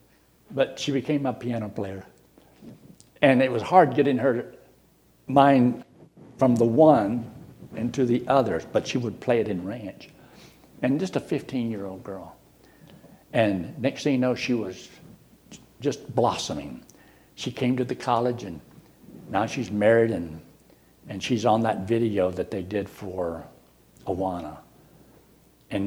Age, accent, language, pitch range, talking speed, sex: 60-79, American, English, 95-135 Hz, 145 wpm, male